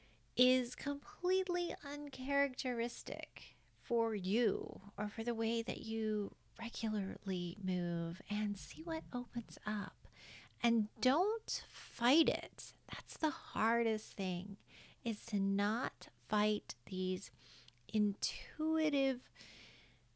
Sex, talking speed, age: female, 95 wpm, 40-59